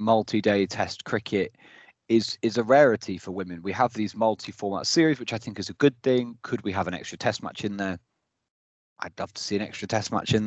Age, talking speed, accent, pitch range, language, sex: 20-39, 225 wpm, British, 100-125 Hz, English, male